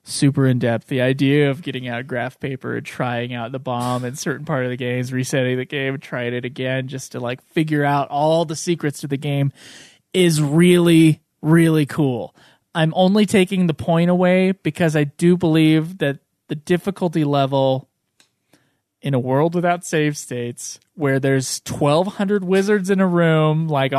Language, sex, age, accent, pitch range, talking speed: English, male, 20-39, American, 135-180 Hz, 175 wpm